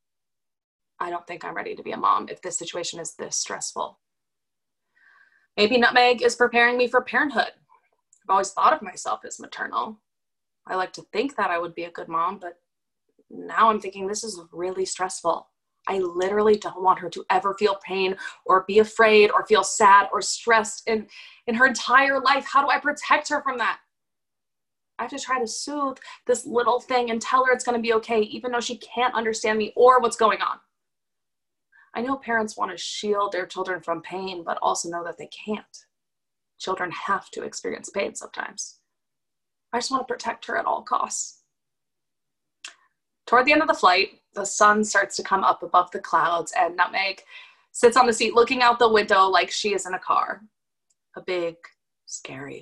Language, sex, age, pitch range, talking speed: English, female, 20-39, 190-250 Hz, 190 wpm